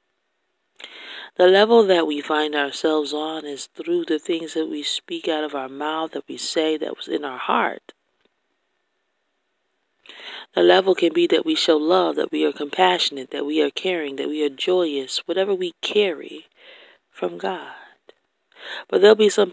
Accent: American